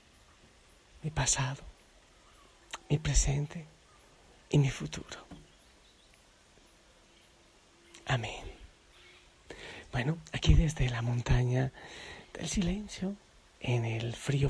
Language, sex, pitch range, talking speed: Spanish, male, 130-170 Hz, 75 wpm